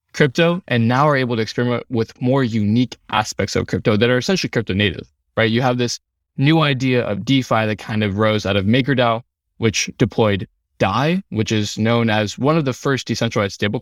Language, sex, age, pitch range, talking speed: English, male, 20-39, 105-130 Hz, 200 wpm